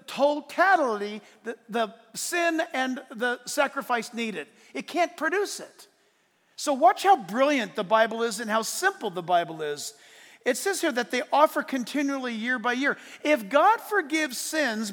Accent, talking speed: American, 155 wpm